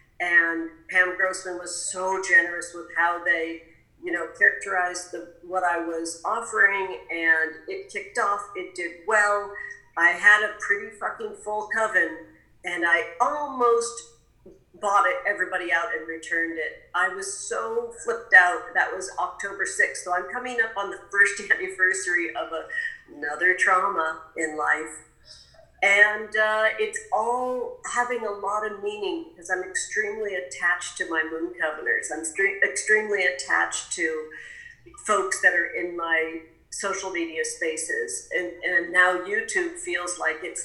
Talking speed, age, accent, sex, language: 145 wpm, 50-69, American, female, English